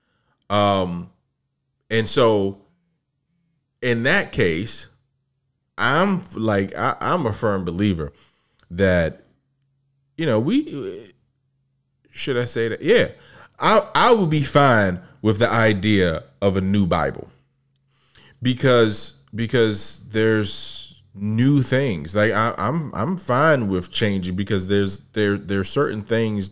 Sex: male